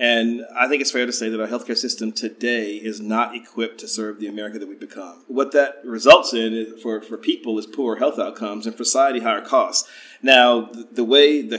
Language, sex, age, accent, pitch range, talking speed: English, male, 40-59, American, 110-125 Hz, 220 wpm